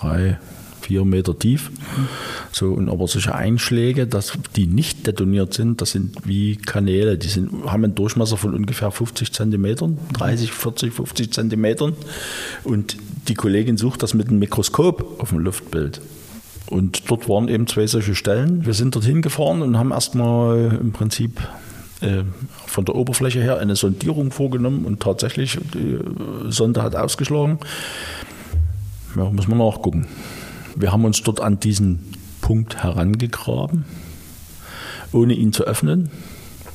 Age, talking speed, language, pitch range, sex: 50-69, 140 wpm, German, 95-125 Hz, male